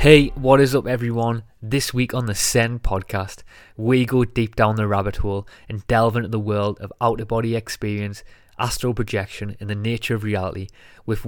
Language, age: English, 20-39